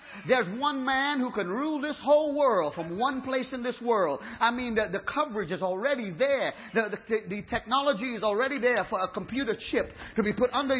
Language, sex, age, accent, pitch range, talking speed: English, male, 40-59, American, 210-275 Hz, 210 wpm